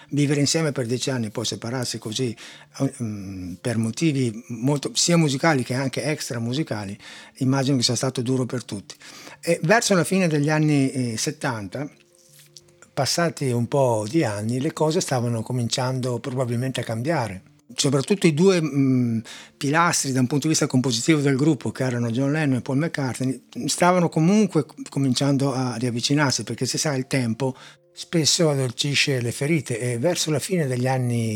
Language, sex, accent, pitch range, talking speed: Italian, male, native, 120-155 Hz, 165 wpm